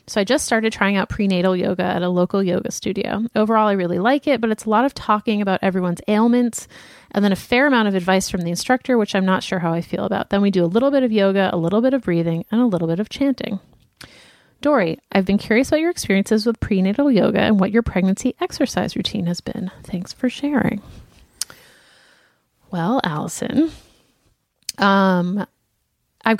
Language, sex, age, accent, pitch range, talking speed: English, female, 30-49, American, 185-235 Hz, 200 wpm